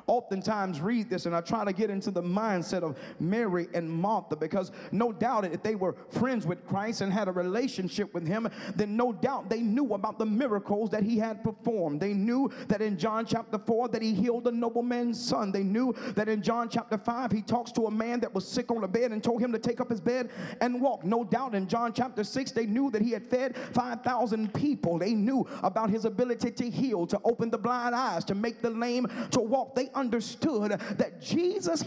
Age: 40-59